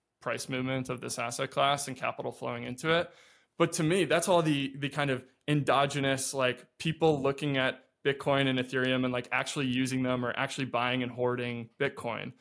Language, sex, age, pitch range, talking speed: English, male, 20-39, 130-150 Hz, 190 wpm